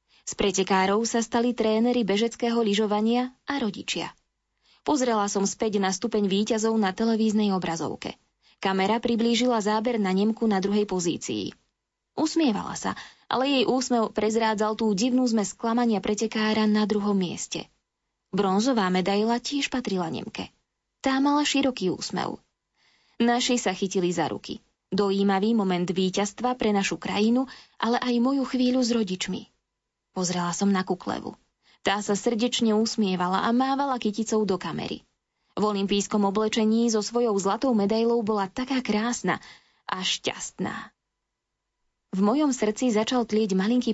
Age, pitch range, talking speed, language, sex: 20-39, 200-235 Hz, 130 wpm, Slovak, female